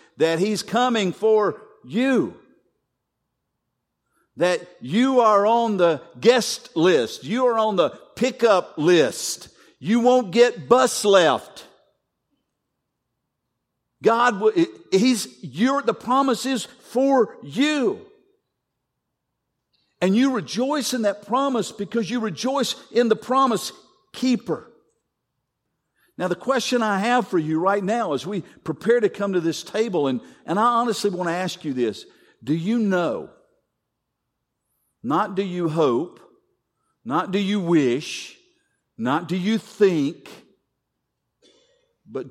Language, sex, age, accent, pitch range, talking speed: English, male, 50-69, American, 165-250 Hz, 120 wpm